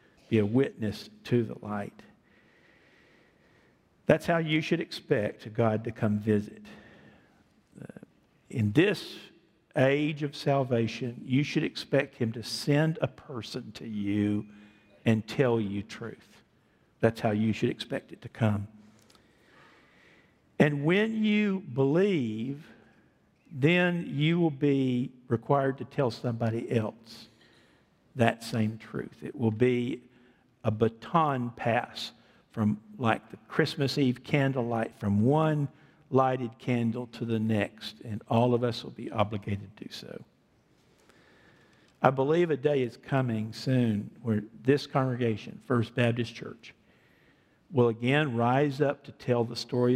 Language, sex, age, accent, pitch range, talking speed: English, male, 50-69, American, 110-140 Hz, 130 wpm